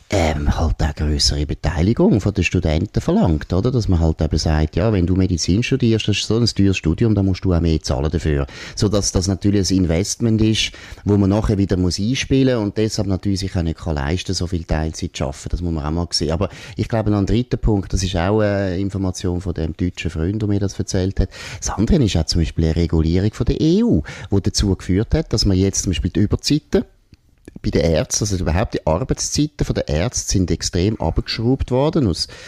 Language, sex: German, male